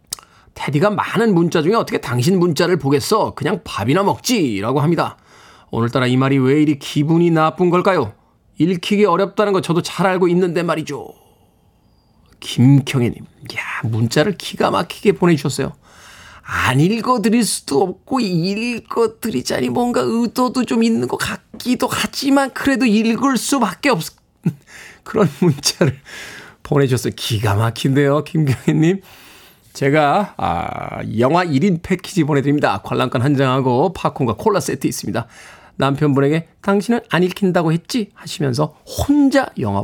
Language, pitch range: Korean, 135-195 Hz